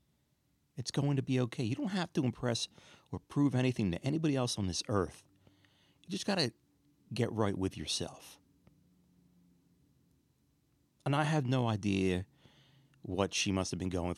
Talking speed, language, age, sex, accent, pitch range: 160 wpm, English, 30-49, male, American, 85-115 Hz